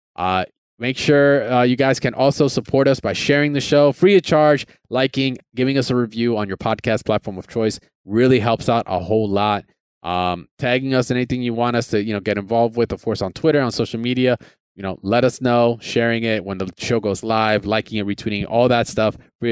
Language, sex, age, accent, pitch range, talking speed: English, male, 20-39, American, 105-130 Hz, 230 wpm